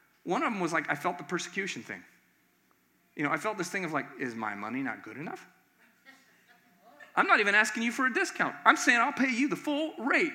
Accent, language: American, English